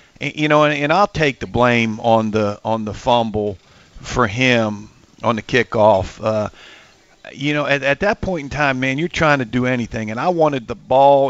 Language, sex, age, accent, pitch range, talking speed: English, male, 50-69, American, 120-140 Hz, 200 wpm